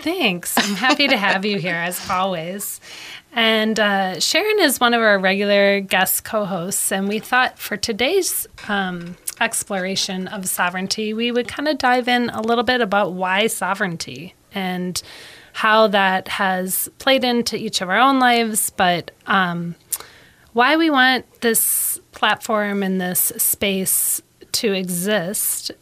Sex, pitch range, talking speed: female, 185-230 Hz, 145 wpm